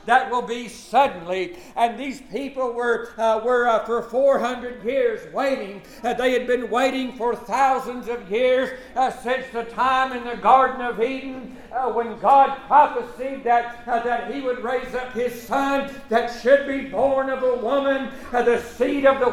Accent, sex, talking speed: American, male, 180 wpm